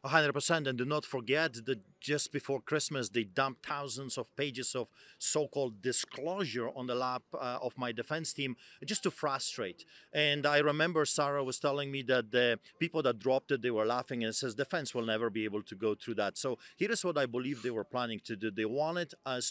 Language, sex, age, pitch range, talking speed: English, male, 40-59, 120-150 Hz, 220 wpm